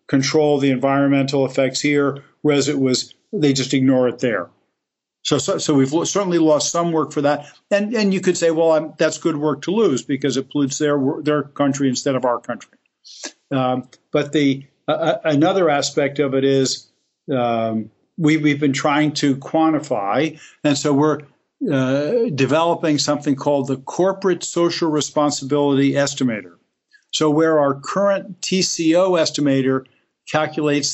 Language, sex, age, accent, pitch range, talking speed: English, male, 50-69, American, 135-155 Hz, 155 wpm